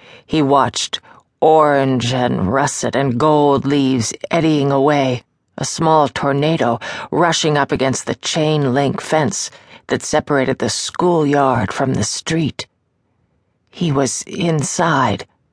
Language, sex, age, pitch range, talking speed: English, female, 40-59, 135-160 Hz, 115 wpm